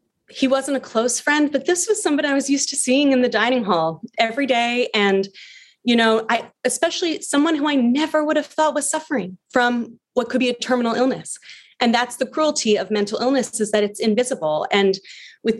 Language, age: English, 30-49